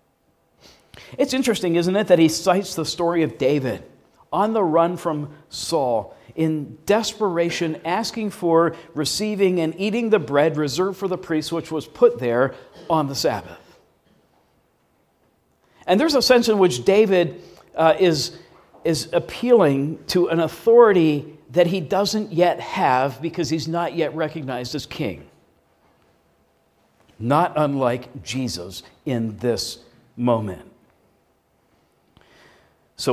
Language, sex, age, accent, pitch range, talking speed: English, male, 50-69, American, 140-180 Hz, 125 wpm